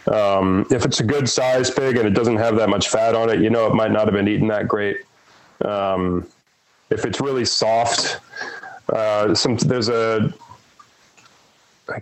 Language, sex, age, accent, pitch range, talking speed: English, male, 30-49, American, 100-115 Hz, 175 wpm